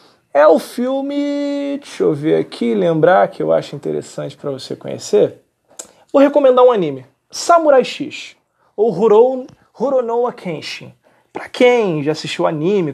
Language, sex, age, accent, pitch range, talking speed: Portuguese, male, 20-39, Brazilian, 150-195 Hz, 135 wpm